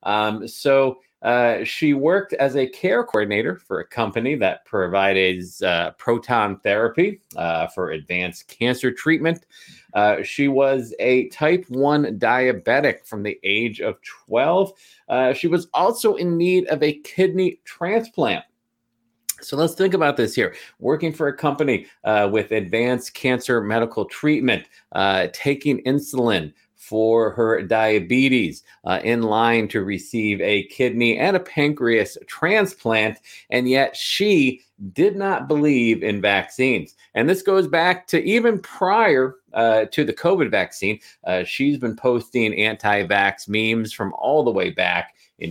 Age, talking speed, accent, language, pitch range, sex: 30-49, 145 wpm, American, English, 100-145 Hz, male